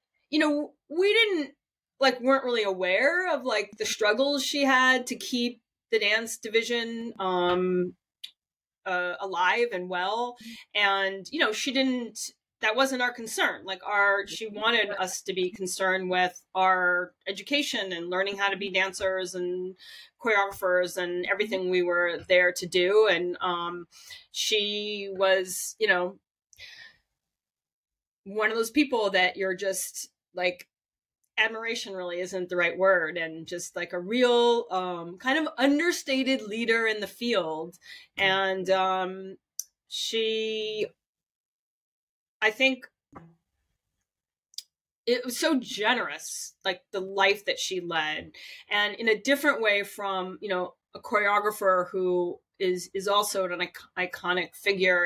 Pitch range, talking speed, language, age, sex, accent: 180-240 Hz, 135 wpm, English, 30-49, female, American